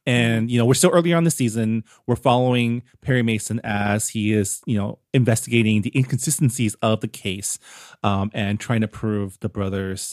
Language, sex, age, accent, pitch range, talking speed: English, male, 30-49, American, 105-125 Hz, 185 wpm